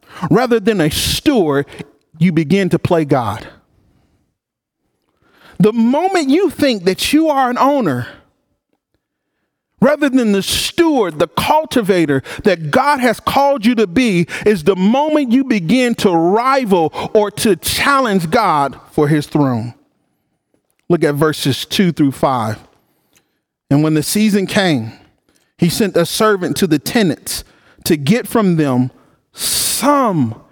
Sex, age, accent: male, 40-59, American